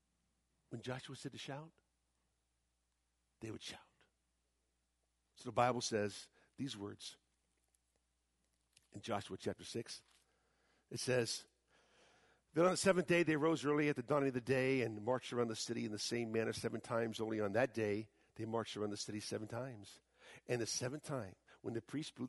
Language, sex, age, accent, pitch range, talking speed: English, male, 50-69, American, 100-135 Hz, 170 wpm